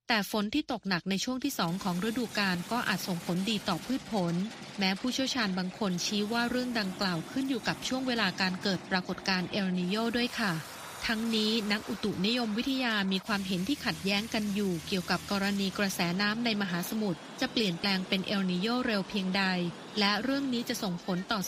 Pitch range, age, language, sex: 180-230 Hz, 20-39, Thai, female